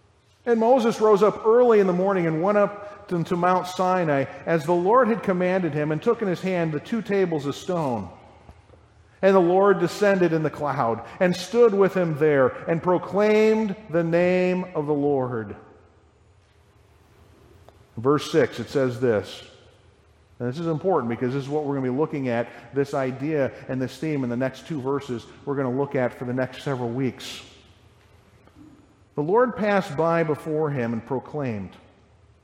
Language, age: English, 50-69